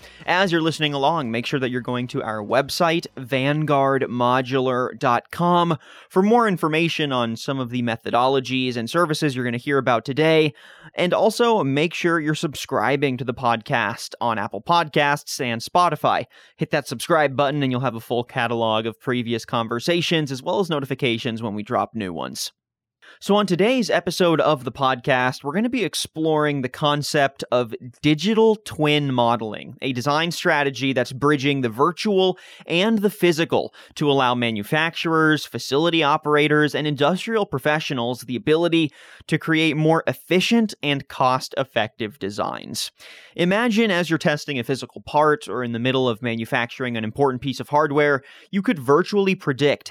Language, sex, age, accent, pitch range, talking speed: English, male, 30-49, American, 125-165 Hz, 160 wpm